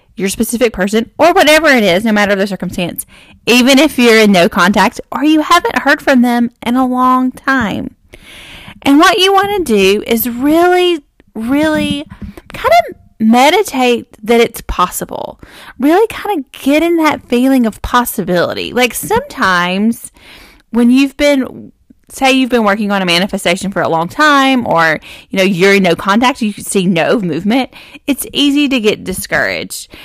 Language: English